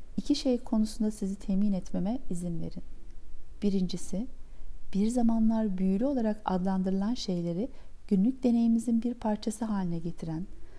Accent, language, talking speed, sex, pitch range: native, Turkish, 115 wpm, female, 185-235 Hz